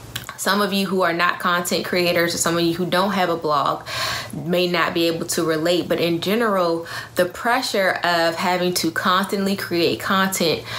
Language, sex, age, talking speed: English, female, 20-39, 190 wpm